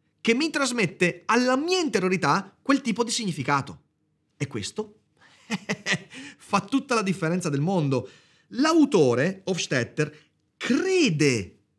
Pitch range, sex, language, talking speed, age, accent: 130-195 Hz, male, Italian, 105 wpm, 30-49, native